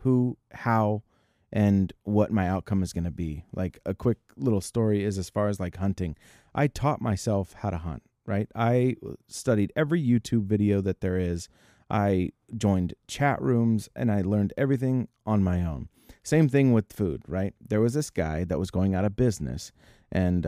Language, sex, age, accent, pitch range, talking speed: English, male, 30-49, American, 95-115 Hz, 180 wpm